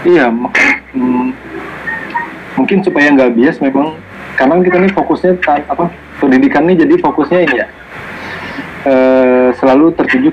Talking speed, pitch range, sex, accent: 135 wpm, 120-155 Hz, male, native